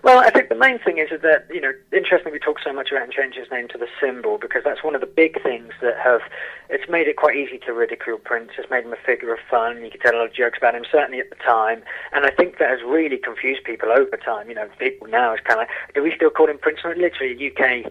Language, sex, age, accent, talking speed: English, male, 30-49, British, 290 wpm